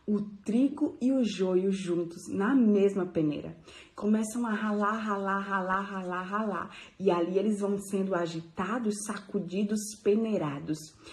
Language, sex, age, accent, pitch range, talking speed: Portuguese, female, 20-39, Brazilian, 185-245 Hz, 130 wpm